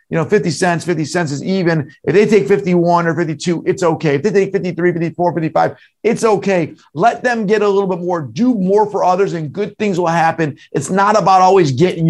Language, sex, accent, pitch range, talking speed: English, male, American, 160-205 Hz, 225 wpm